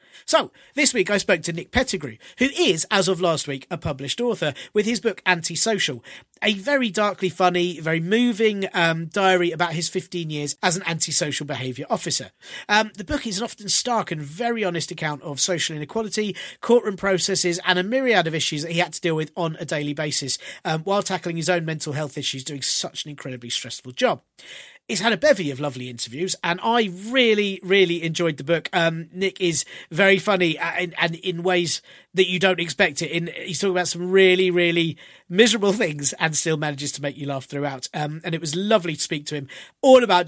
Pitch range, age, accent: 150-195 Hz, 40-59, British